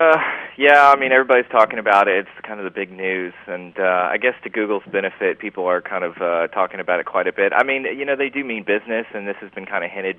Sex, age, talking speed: male, 30-49, 275 wpm